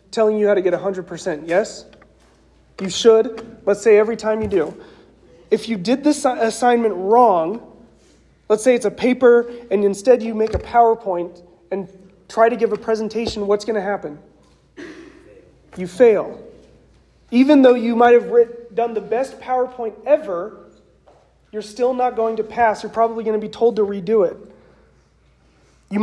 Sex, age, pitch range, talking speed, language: male, 30-49, 205-245 Hz, 160 wpm, English